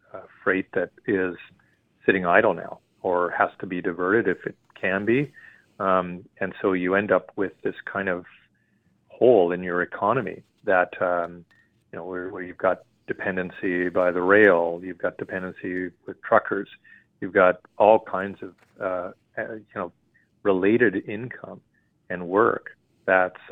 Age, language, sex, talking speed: 40-59, English, male, 150 wpm